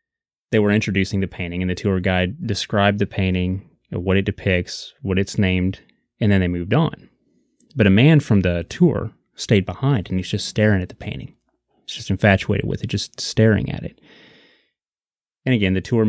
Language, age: English, 30-49